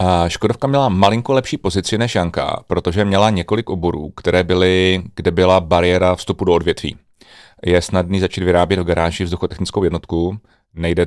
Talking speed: 150 wpm